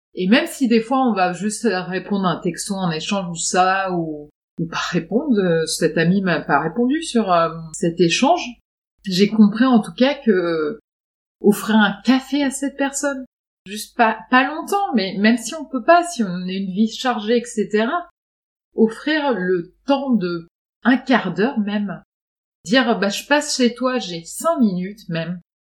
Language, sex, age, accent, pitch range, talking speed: French, female, 30-49, French, 190-245 Hz, 180 wpm